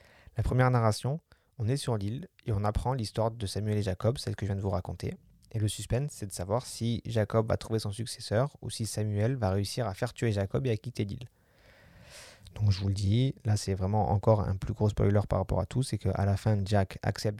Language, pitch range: French, 100-120 Hz